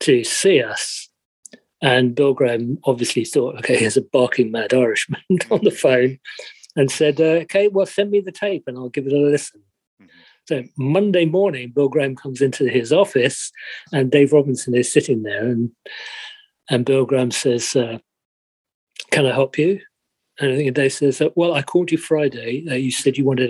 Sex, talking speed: male, 185 wpm